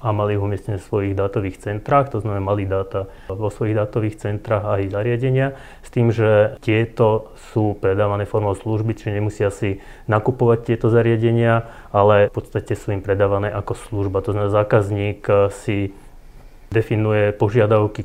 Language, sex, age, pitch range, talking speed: Slovak, male, 30-49, 100-110 Hz, 155 wpm